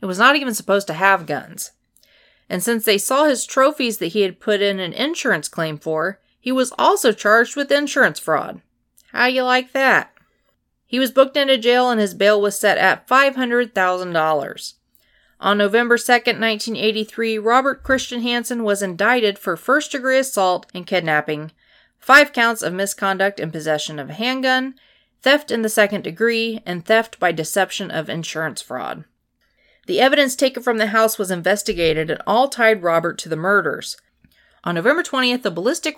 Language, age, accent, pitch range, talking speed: English, 30-49, American, 185-245 Hz, 170 wpm